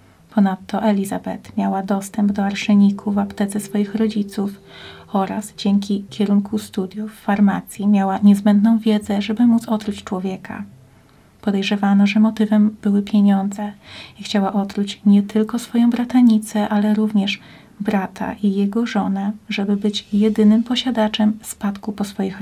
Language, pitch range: Polish, 200-215 Hz